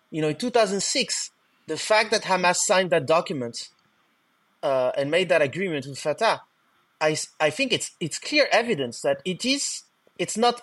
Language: English